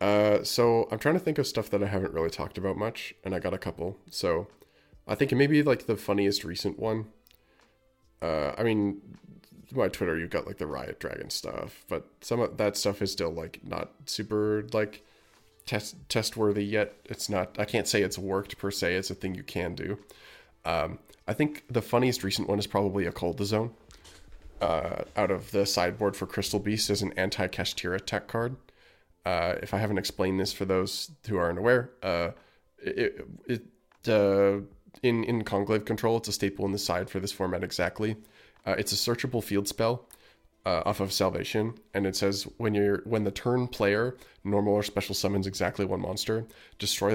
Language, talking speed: English, 200 wpm